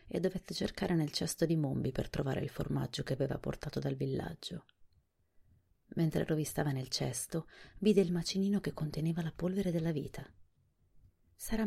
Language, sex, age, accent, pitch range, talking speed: Italian, female, 30-49, native, 140-175 Hz, 155 wpm